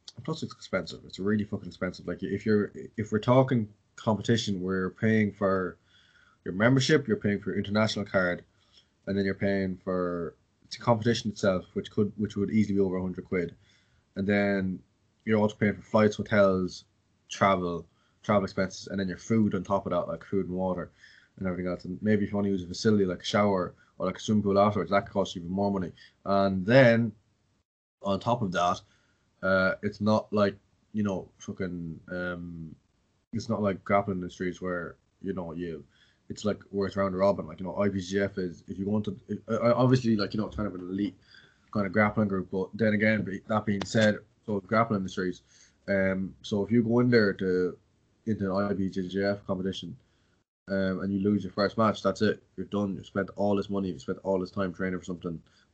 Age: 20-39